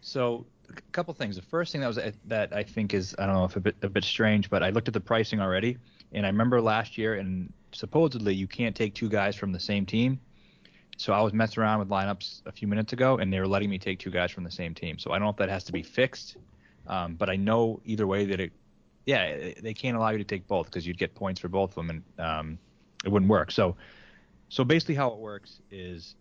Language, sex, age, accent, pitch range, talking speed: English, male, 20-39, American, 95-110 Hz, 260 wpm